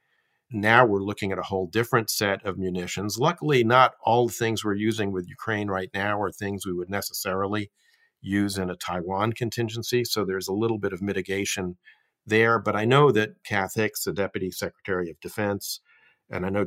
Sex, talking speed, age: male, 190 wpm, 50-69